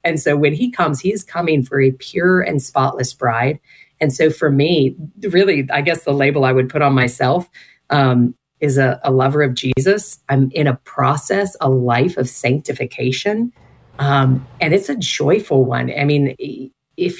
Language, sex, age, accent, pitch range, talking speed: English, female, 40-59, American, 130-165 Hz, 180 wpm